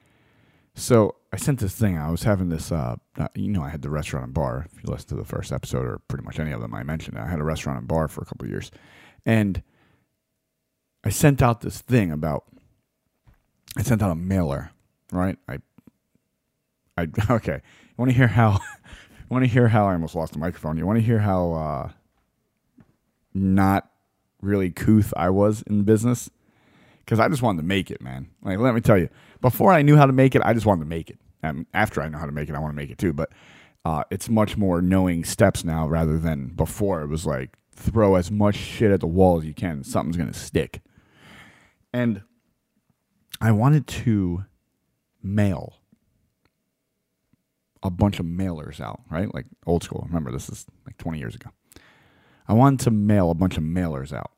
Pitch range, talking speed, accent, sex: 80-110 Hz, 205 wpm, American, male